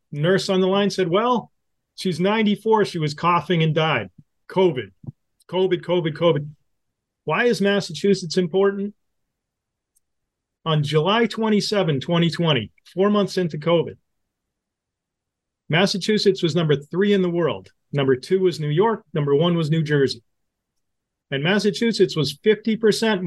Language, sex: English, male